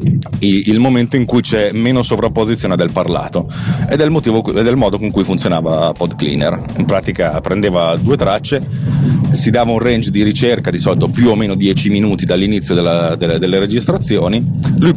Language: Italian